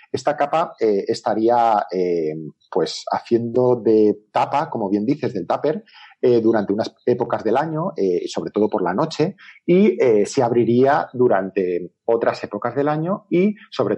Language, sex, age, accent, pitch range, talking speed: Spanish, male, 40-59, Spanish, 110-150 Hz, 160 wpm